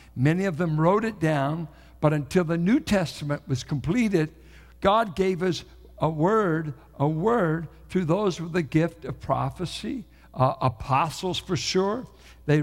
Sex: male